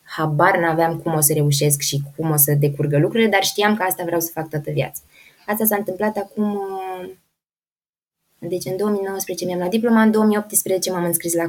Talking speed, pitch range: 190 wpm, 165-215 Hz